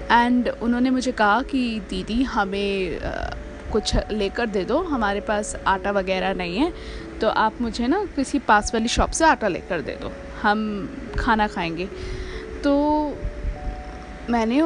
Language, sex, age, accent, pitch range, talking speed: Hindi, female, 20-39, native, 210-300 Hz, 145 wpm